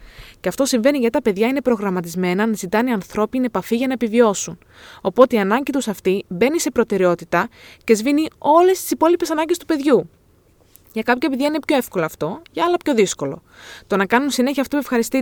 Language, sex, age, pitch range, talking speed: Greek, female, 20-39, 195-280 Hz, 195 wpm